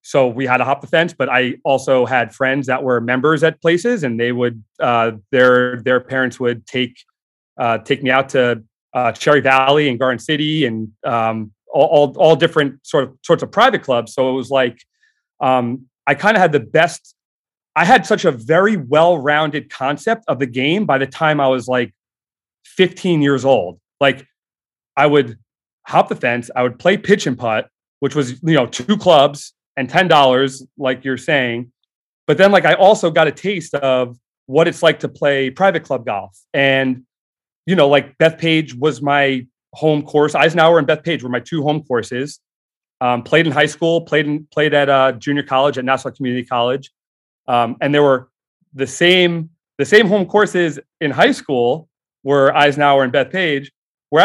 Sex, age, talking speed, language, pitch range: male, 30-49, 190 wpm, English, 125-155 Hz